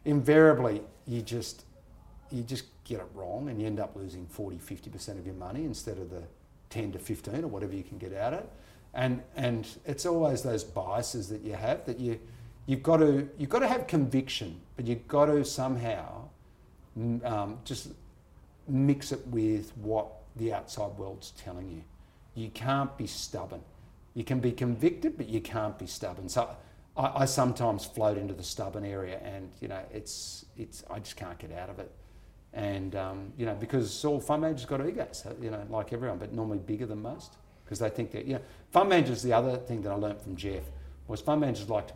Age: 50-69